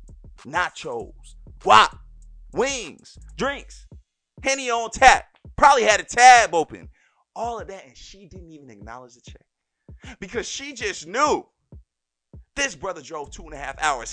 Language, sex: English, male